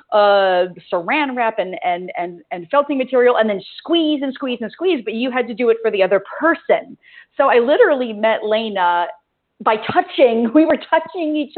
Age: 40-59